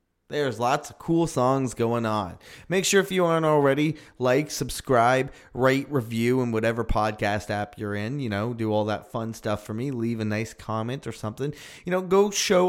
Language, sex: English, male